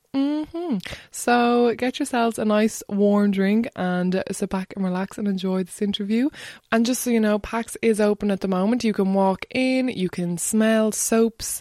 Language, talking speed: English, 195 wpm